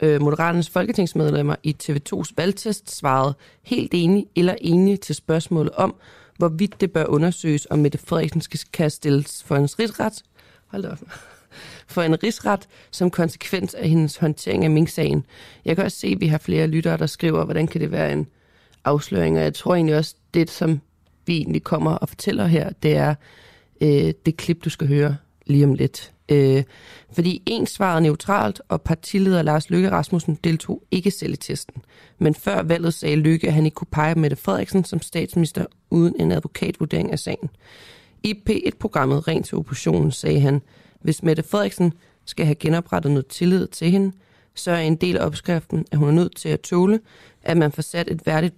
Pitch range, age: 150-180 Hz, 30-49